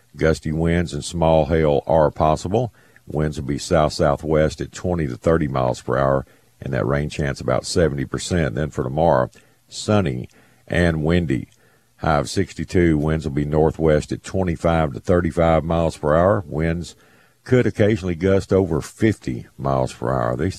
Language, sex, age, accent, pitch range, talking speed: English, male, 50-69, American, 70-85 Hz, 155 wpm